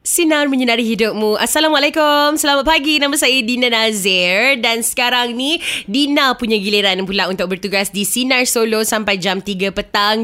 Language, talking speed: Malay, 150 wpm